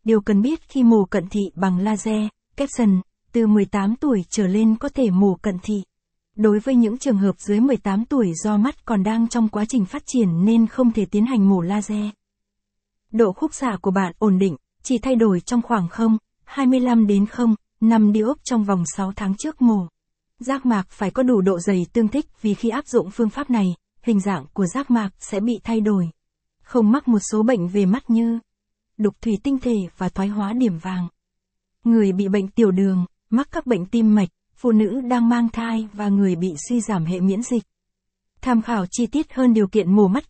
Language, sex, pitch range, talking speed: Vietnamese, female, 195-235 Hz, 210 wpm